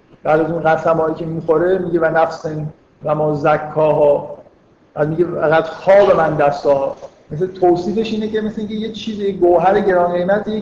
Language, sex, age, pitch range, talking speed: Persian, male, 50-69, 160-205 Hz, 170 wpm